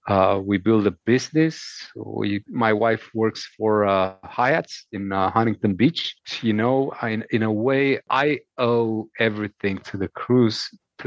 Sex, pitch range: male, 105-120 Hz